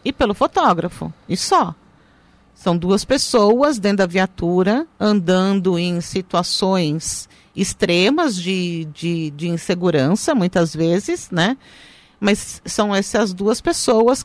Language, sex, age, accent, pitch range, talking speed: Portuguese, female, 50-69, Brazilian, 170-240 Hz, 115 wpm